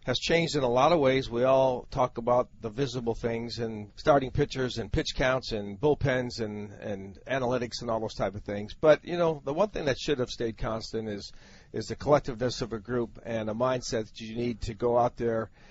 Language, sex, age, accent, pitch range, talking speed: English, male, 40-59, American, 120-145 Hz, 225 wpm